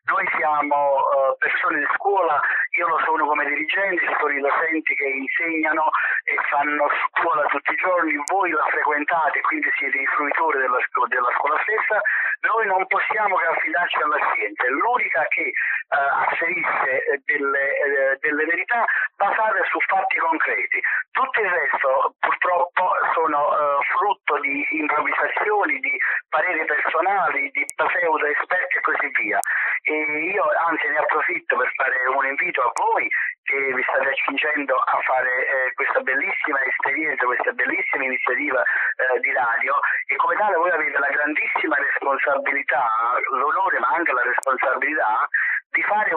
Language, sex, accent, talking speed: Italian, male, native, 145 wpm